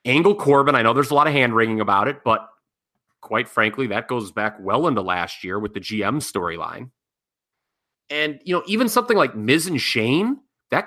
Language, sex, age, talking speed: English, male, 30-49, 200 wpm